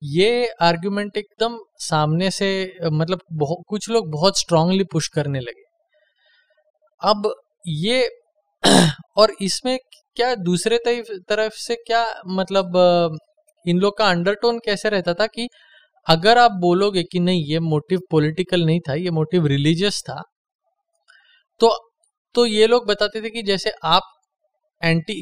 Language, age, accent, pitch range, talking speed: Hindi, 20-39, native, 165-235 Hz, 135 wpm